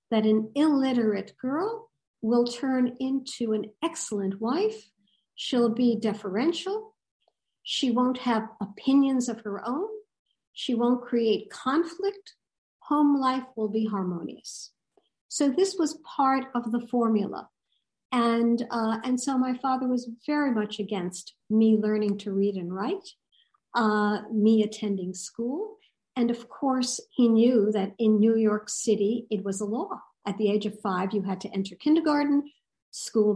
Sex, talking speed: male, 145 wpm